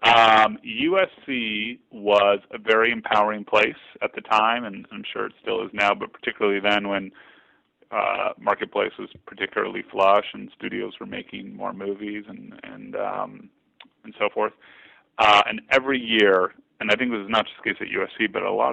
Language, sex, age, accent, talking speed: English, male, 30-49, American, 180 wpm